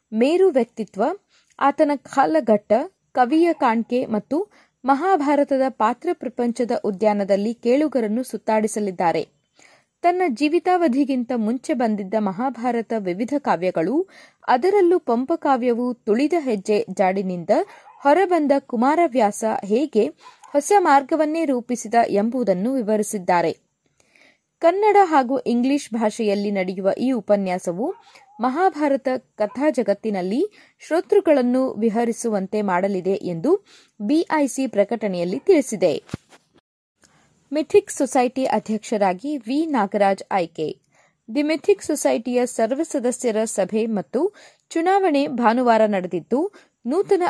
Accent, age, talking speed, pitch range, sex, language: native, 30-49, 85 wpm, 215-305 Hz, female, Kannada